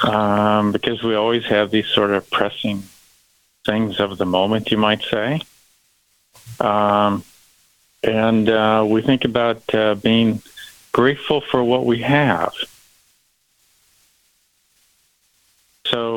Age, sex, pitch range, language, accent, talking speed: 50-69, male, 105-120 Hz, English, American, 110 wpm